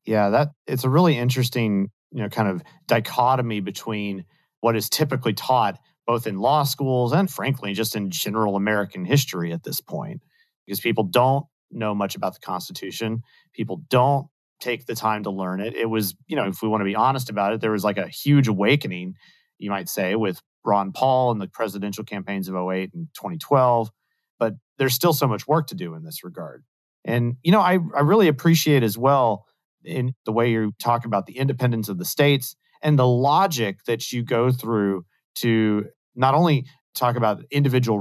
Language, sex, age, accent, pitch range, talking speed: English, male, 40-59, American, 105-140 Hz, 195 wpm